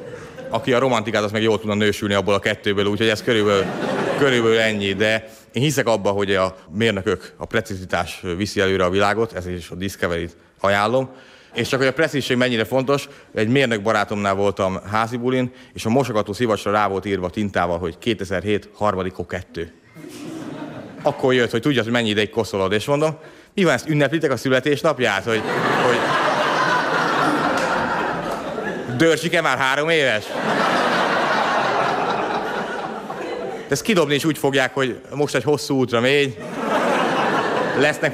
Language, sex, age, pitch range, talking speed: Hungarian, male, 30-49, 100-130 Hz, 145 wpm